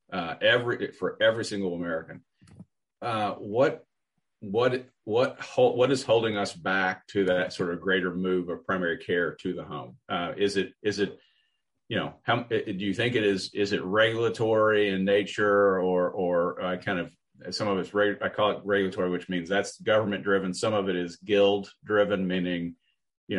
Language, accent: English, American